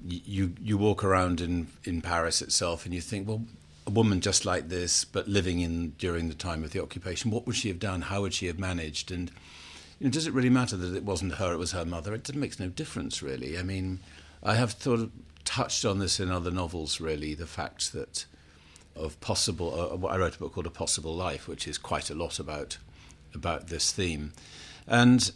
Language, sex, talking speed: English, male, 220 wpm